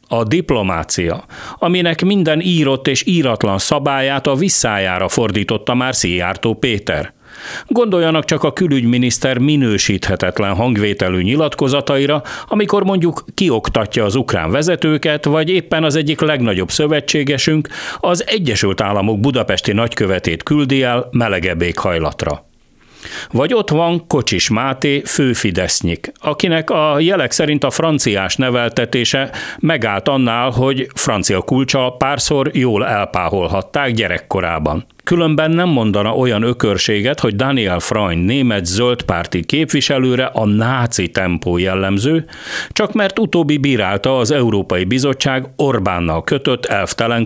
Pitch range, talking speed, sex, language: 105-150 Hz, 115 wpm, male, Hungarian